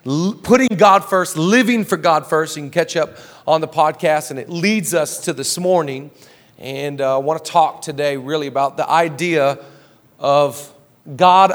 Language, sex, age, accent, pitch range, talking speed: English, male, 40-59, American, 145-200 Hz, 175 wpm